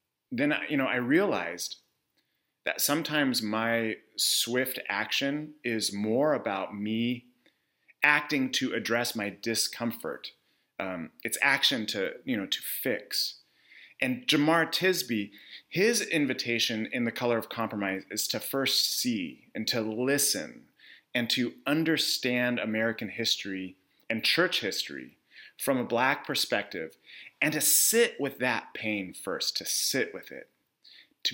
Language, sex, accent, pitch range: English, male, American, 110-155 Hz